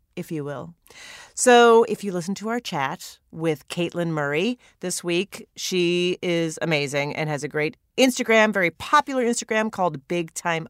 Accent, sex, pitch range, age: American, female, 160-245 Hz, 40-59